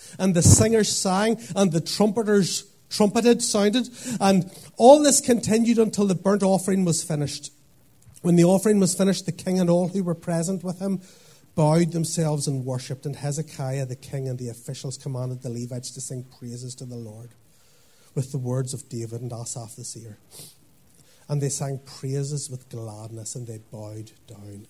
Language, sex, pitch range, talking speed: English, male, 125-155 Hz, 175 wpm